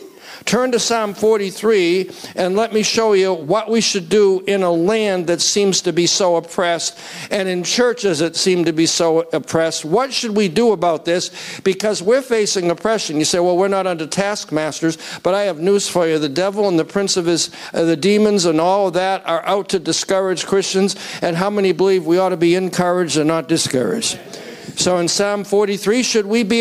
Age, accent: 60-79, American